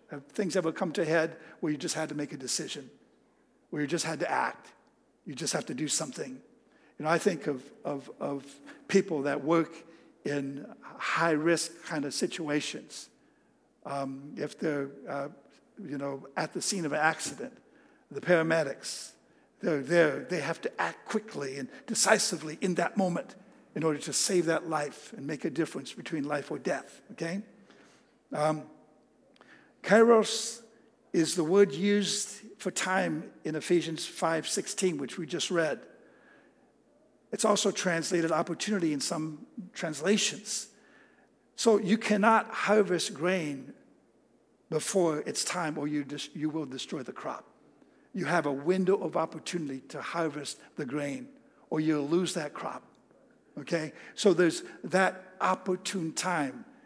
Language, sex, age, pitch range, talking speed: English, male, 60-79, 150-205 Hz, 150 wpm